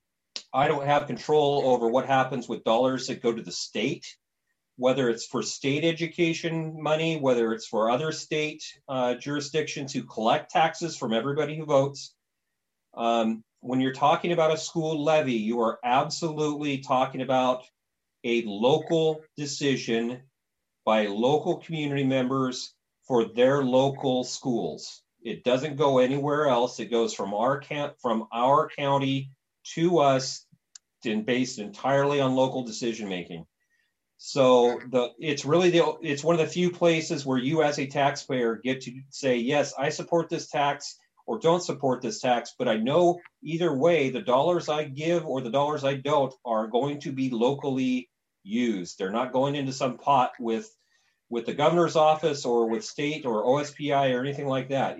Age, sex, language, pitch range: 40-59, male, English, 125-150 Hz